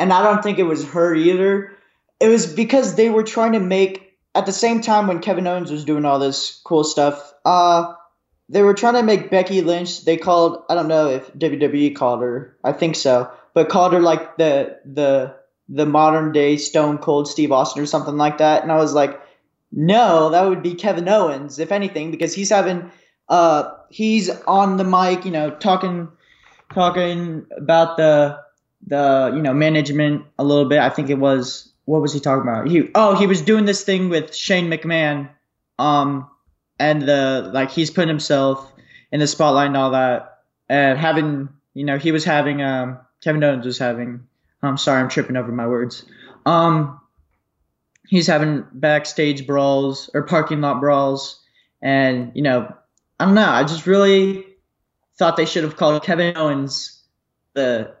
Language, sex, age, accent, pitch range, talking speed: English, male, 20-39, American, 140-180 Hz, 180 wpm